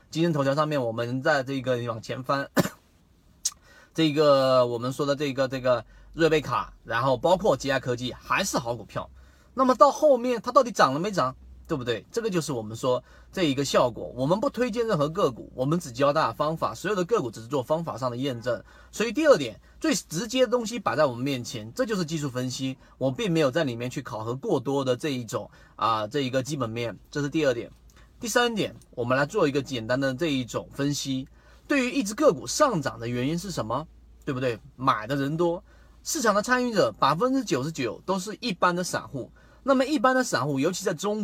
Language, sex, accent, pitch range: Chinese, male, native, 130-210 Hz